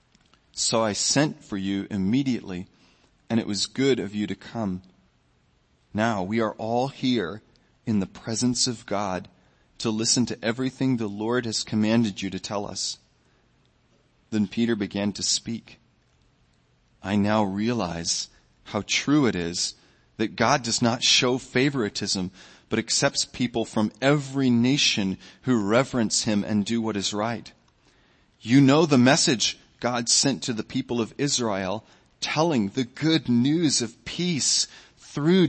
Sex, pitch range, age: male, 105-140 Hz, 30-49